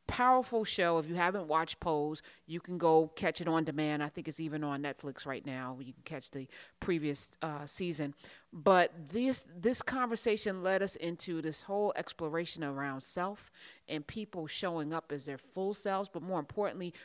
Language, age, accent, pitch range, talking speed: English, 30-49, American, 170-230 Hz, 185 wpm